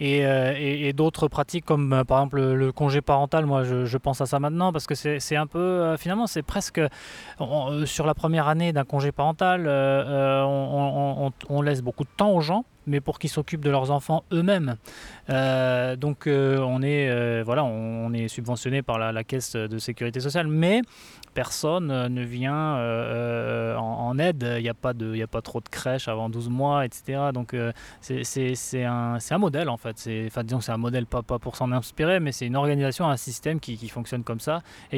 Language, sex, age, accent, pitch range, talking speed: French, male, 20-39, French, 125-150 Hz, 210 wpm